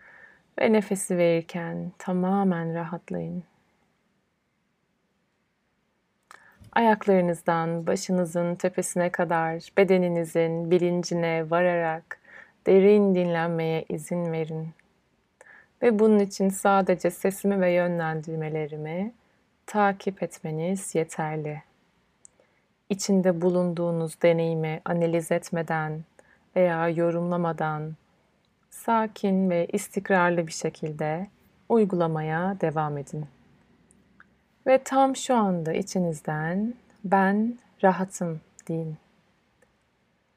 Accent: native